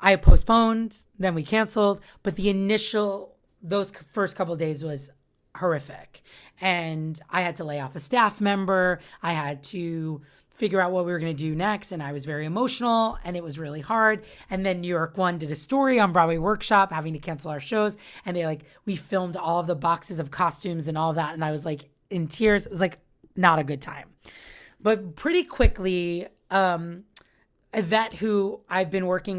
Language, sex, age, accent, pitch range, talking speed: English, female, 30-49, American, 165-200 Hz, 200 wpm